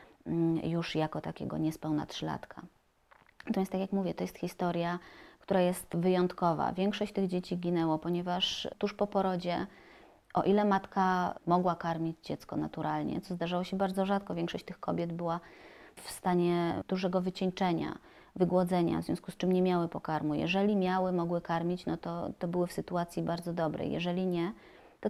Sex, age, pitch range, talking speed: female, 20-39, 165-185 Hz, 160 wpm